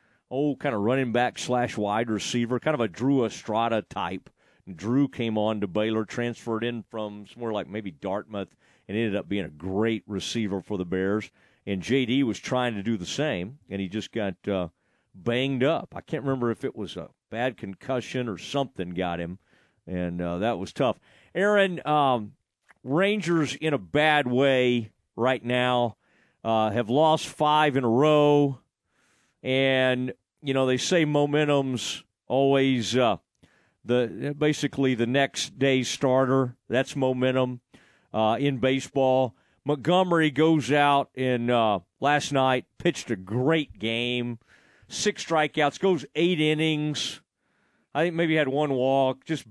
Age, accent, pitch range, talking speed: 40-59, American, 115-150 Hz, 150 wpm